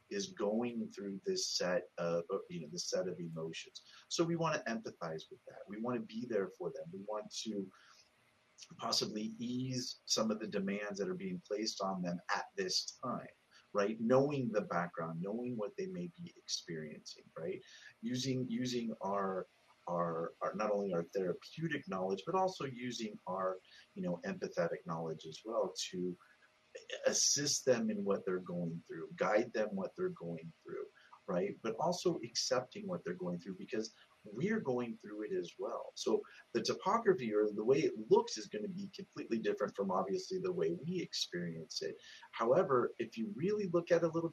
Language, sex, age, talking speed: English, male, 30-49, 180 wpm